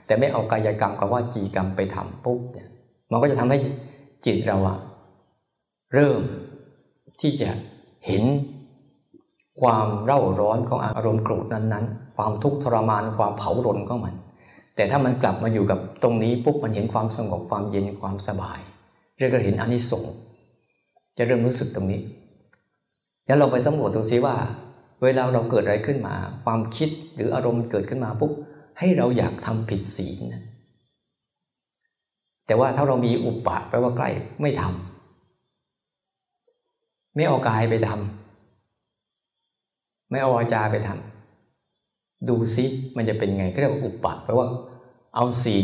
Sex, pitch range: male, 105-130 Hz